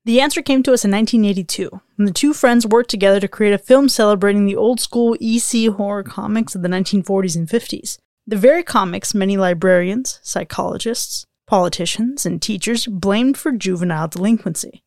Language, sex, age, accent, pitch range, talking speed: English, female, 20-39, American, 195-245 Hz, 165 wpm